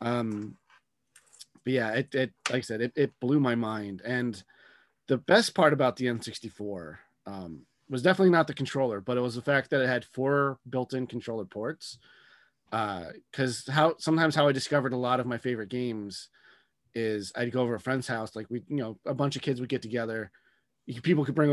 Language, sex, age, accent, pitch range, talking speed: English, male, 30-49, American, 110-135 Hz, 205 wpm